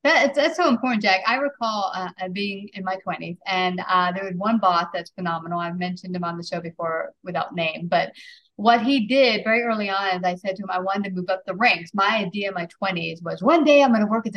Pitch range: 190-255 Hz